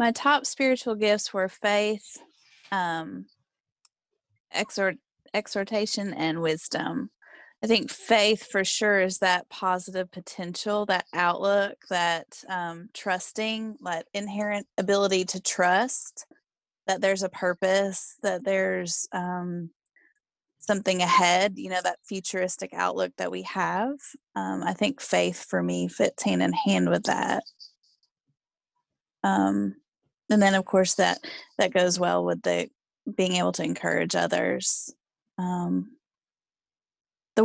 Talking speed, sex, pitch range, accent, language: 120 wpm, female, 180-250 Hz, American, English